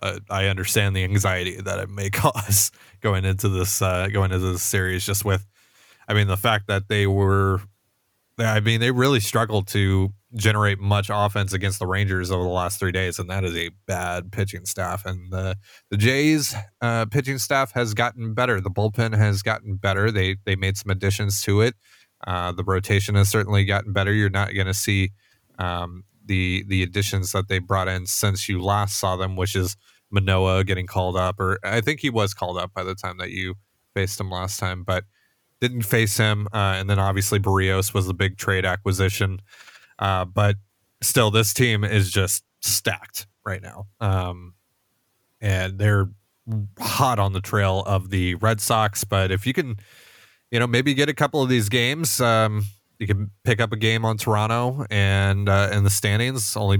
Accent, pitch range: American, 95-110 Hz